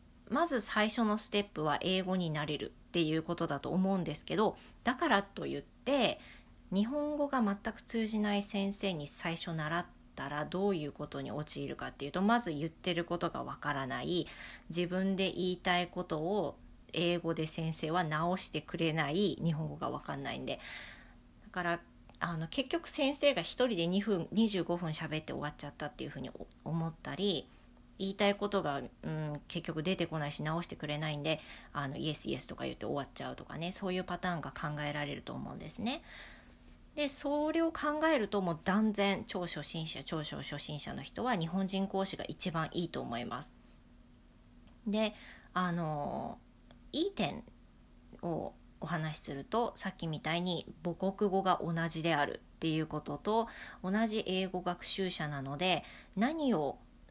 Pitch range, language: 155-200 Hz, English